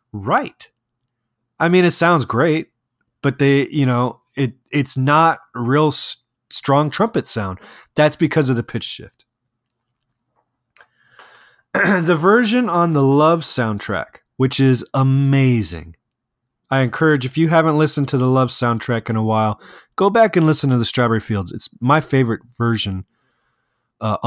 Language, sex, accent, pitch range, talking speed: English, male, American, 115-145 Hz, 145 wpm